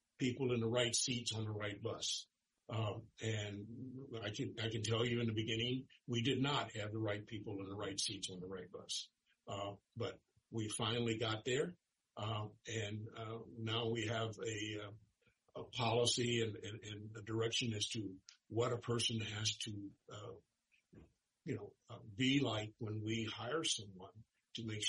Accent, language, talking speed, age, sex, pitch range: American, English, 180 wpm, 50-69, male, 105-120 Hz